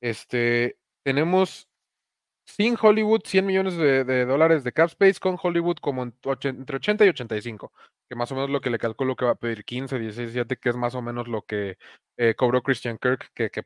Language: English